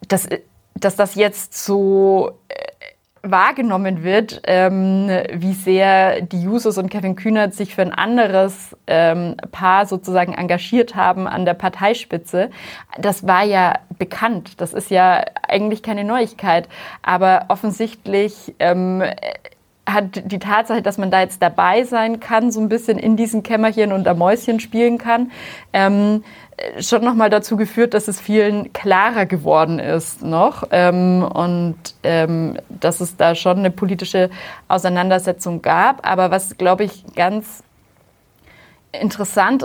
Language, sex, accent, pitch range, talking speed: German, female, German, 185-215 Hz, 140 wpm